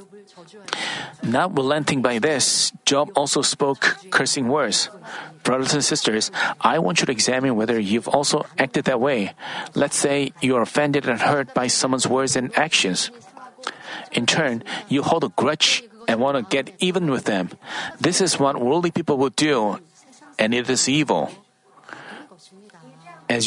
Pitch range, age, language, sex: 130-170 Hz, 40-59, Korean, male